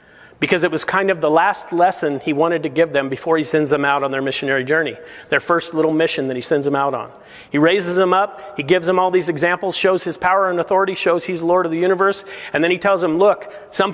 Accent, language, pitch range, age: American, English, 155-195 Hz, 40-59